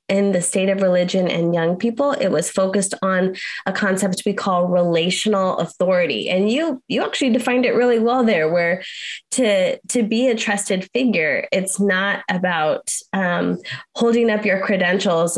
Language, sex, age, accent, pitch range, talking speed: English, female, 20-39, American, 180-220 Hz, 165 wpm